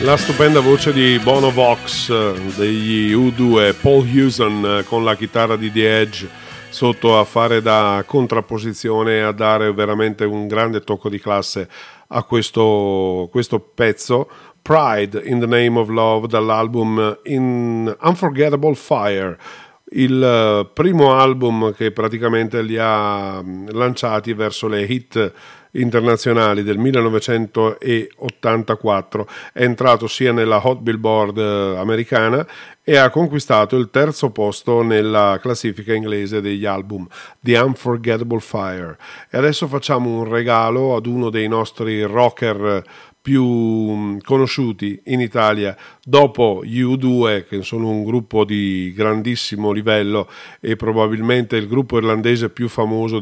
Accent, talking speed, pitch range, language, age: native, 125 wpm, 105-125 Hz, Italian, 40-59